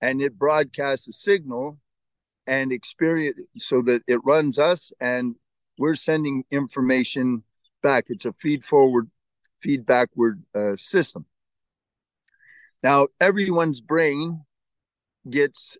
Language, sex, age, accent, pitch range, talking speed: English, male, 50-69, American, 125-145 Hz, 110 wpm